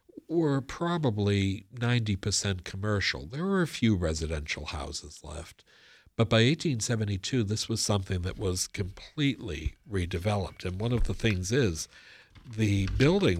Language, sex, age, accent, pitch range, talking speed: English, male, 60-79, American, 90-110 Hz, 130 wpm